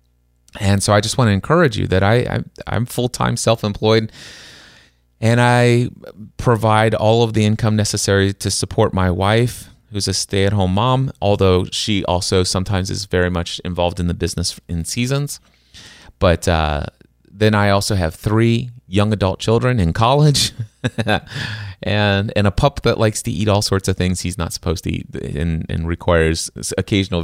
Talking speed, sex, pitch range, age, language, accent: 170 wpm, male, 90-115 Hz, 30-49, English, American